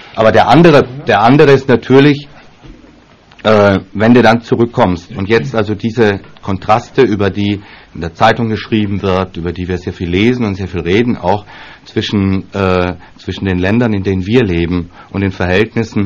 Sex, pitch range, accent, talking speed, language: male, 95-115 Hz, German, 175 wpm, German